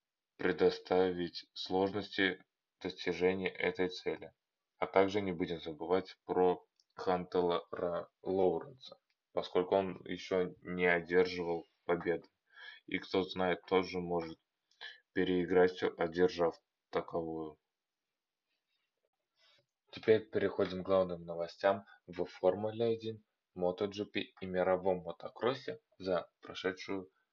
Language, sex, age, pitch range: Russian, male, 20-39, 85-95 Hz